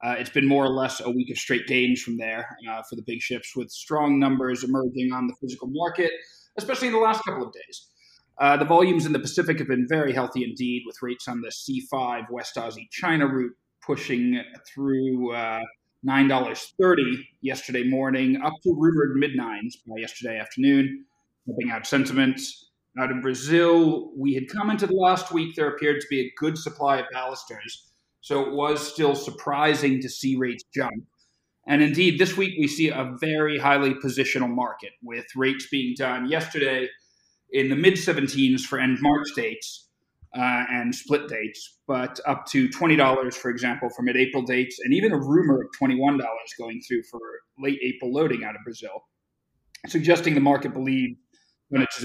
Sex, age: male, 30-49